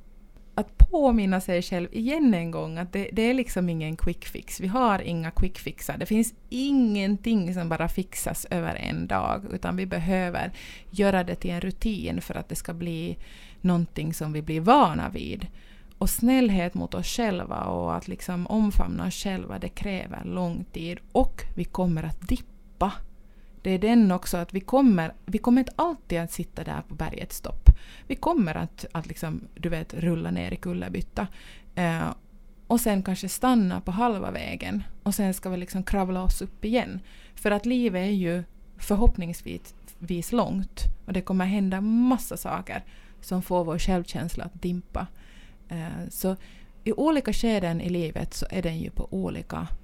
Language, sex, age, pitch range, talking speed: Swedish, female, 30-49, 170-210 Hz, 175 wpm